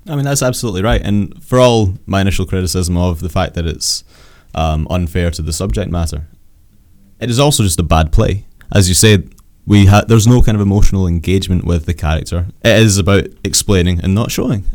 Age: 20-39